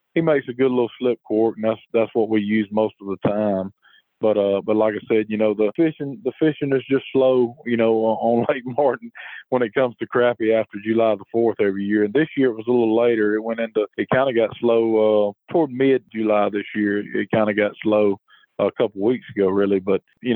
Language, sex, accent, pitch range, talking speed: English, male, American, 105-120 Hz, 245 wpm